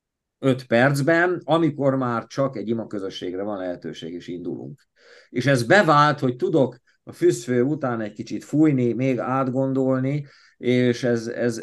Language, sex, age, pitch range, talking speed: Hungarian, male, 50-69, 110-135 Hz, 145 wpm